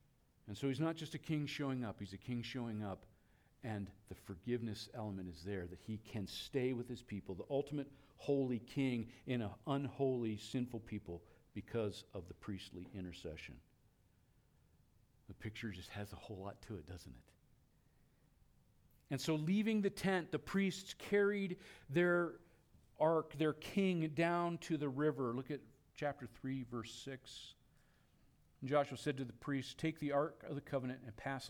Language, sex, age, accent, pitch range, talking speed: English, male, 50-69, American, 110-150 Hz, 165 wpm